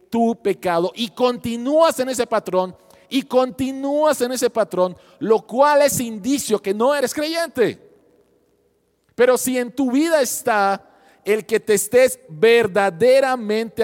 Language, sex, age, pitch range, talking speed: Spanish, male, 40-59, 160-230 Hz, 135 wpm